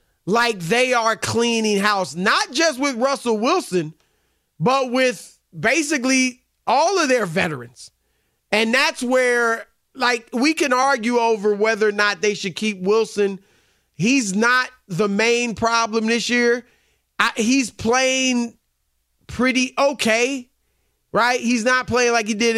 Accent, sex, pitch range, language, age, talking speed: American, male, 210-255 Hz, English, 30-49, 135 wpm